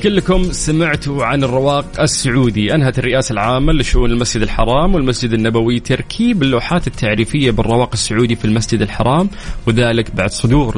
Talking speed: 135 wpm